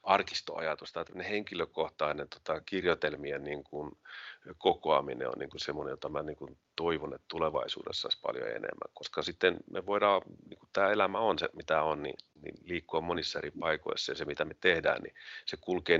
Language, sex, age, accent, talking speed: Finnish, male, 40-59, native, 180 wpm